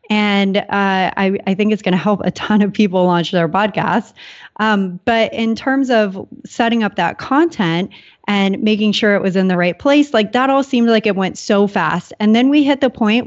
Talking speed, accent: 220 wpm, American